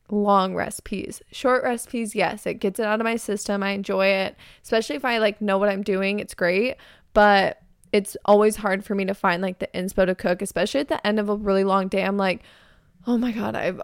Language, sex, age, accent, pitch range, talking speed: English, female, 20-39, American, 195-220 Hz, 230 wpm